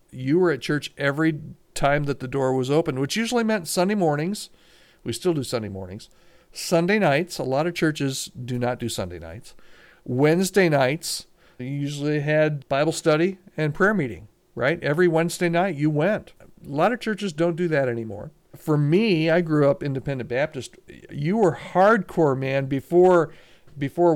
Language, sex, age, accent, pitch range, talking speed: English, male, 50-69, American, 130-175 Hz, 170 wpm